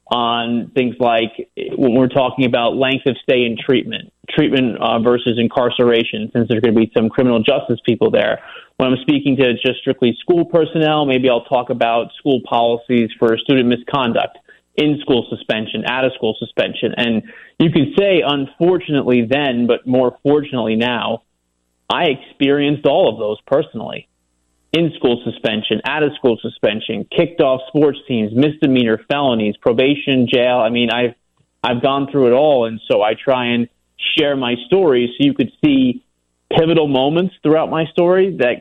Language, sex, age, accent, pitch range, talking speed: English, male, 30-49, American, 120-145 Hz, 160 wpm